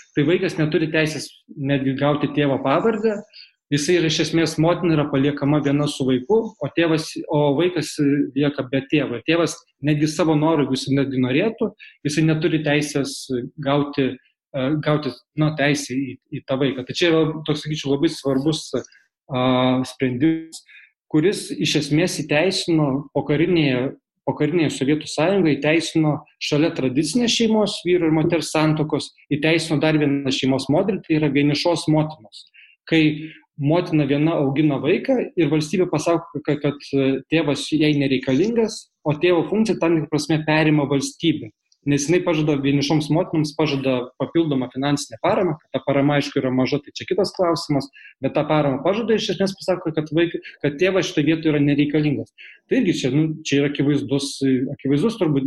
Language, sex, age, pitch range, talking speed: English, male, 20-39, 140-160 Hz, 145 wpm